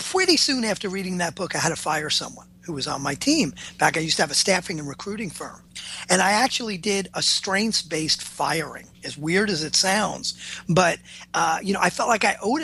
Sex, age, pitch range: male, 40-59, 165-215 Hz